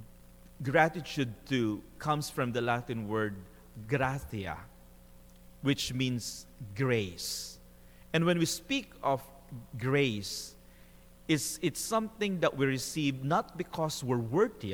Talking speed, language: 110 wpm, English